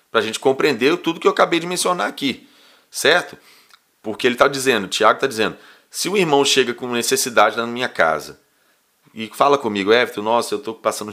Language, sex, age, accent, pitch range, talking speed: Portuguese, male, 30-49, Brazilian, 110-150 Hz, 200 wpm